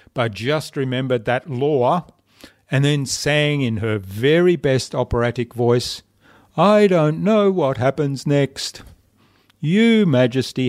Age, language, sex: 50-69, English, male